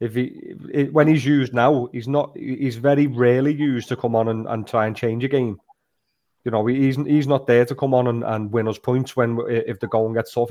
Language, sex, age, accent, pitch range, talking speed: English, male, 30-49, British, 120-140 Hz, 250 wpm